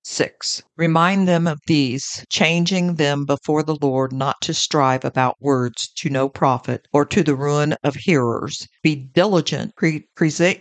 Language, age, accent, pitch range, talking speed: English, 60-79, American, 135-160 Hz, 155 wpm